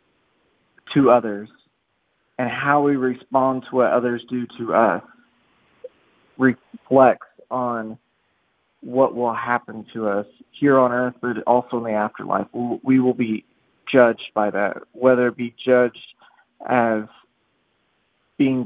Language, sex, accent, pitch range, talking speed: English, male, American, 115-130 Hz, 125 wpm